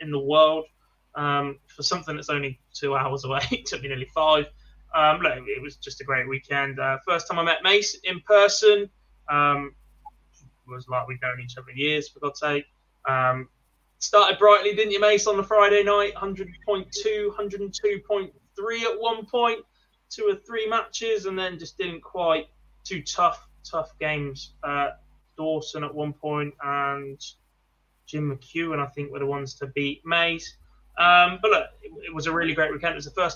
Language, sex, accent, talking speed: English, male, British, 185 wpm